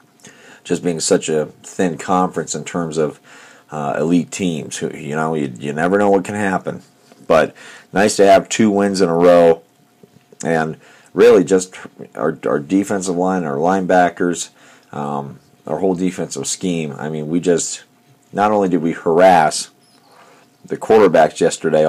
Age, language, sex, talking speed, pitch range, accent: 40-59, English, male, 155 wpm, 80-95 Hz, American